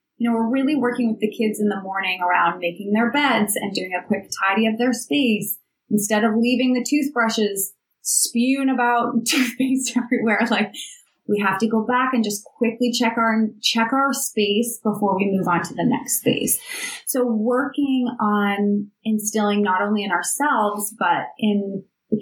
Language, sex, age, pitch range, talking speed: English, female, 30-49, 200-245 Hz, 175 wpm